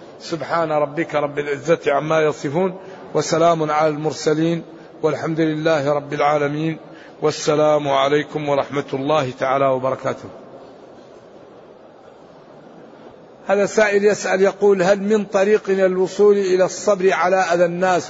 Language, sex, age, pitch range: Arabic, male, 60-79, 155-190 Hz